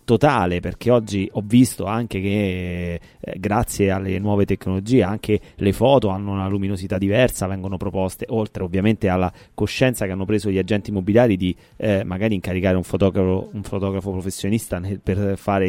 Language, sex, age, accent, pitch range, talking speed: Italian, male, 30-49, native, 95-120 Hz, 165 wpm